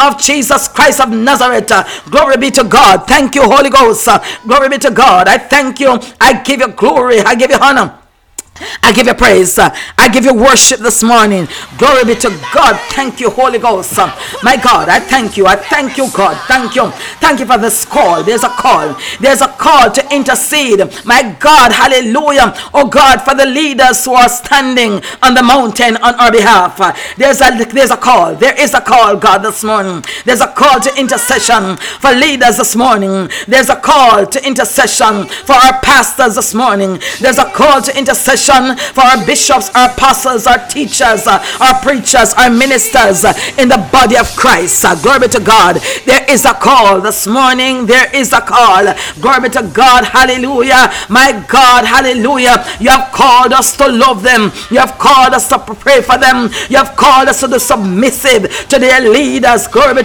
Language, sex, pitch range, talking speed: English, female, 235-270 Hz, 190 wpm